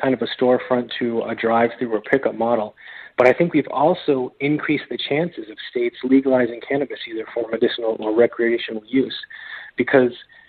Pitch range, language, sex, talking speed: 120-140 Hz, English, male, 165 wpm